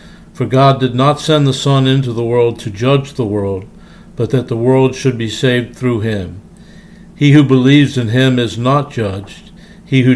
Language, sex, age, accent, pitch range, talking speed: English, male, 60-79, American, 115-140 Hz, 195 wpm